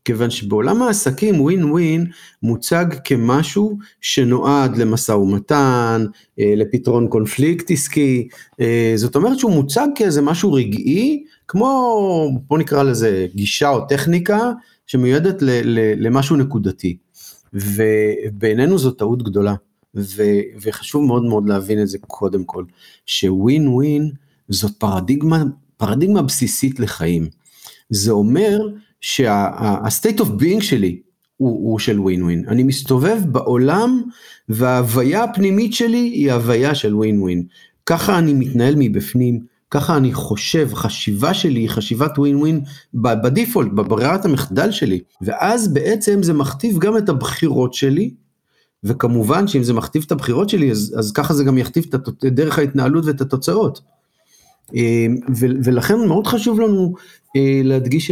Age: 50-69